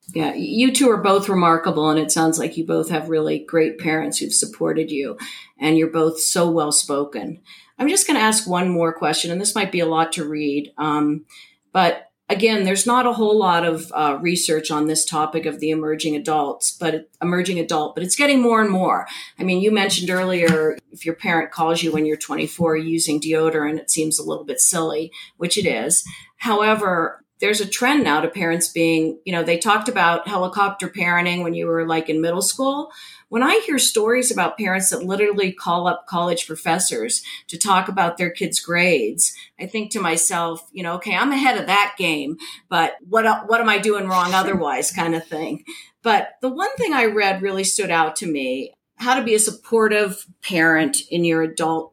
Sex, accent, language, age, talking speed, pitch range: female, American, English, 40-59, 200 wpm, 160-205 Hz